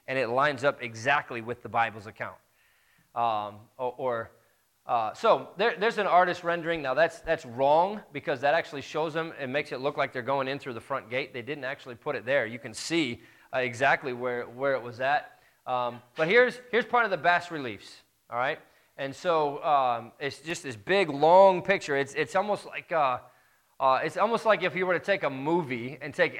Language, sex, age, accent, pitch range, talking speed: English, male, 20-39, American, 130-175 Hz, 210 wpm